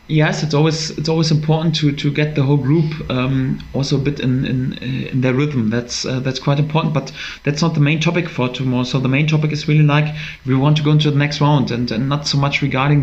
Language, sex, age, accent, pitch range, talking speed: English, male, 20-39, German, 140-155 Hz, 255 wpm